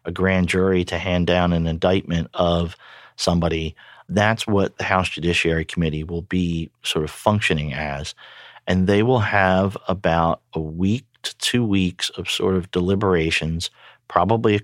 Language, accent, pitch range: English, American, 85-100 Hz